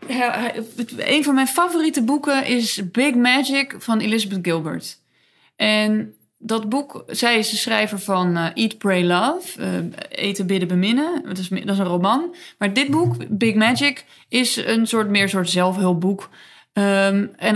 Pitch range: 180-255 Hz